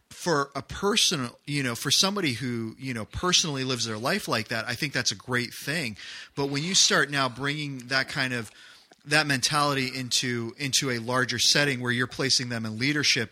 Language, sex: English, male